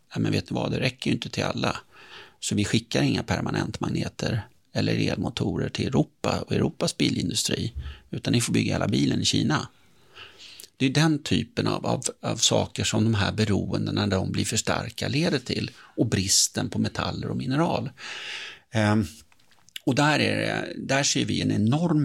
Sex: male